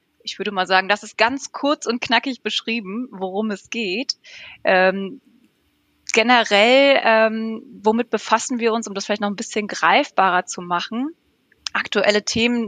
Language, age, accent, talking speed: German, 20-39, German, 150 wpm